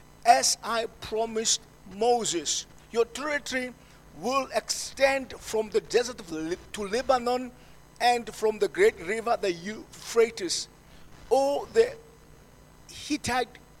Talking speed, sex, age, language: 110 wpm, male, 50-69, English